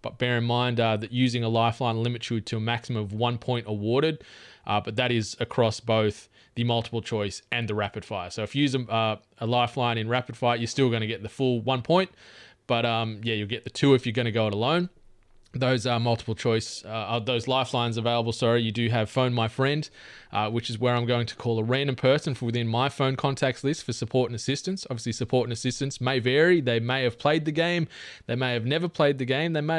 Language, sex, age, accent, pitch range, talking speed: English, male, 20-39, Australian, 115-135 Hz, 245 wpm